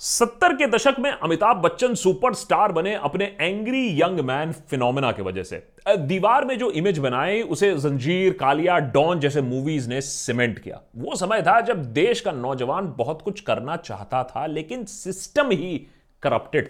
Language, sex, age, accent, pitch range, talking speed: Hindi, male, 30-49, native, 135-220 Hz, 165 wpm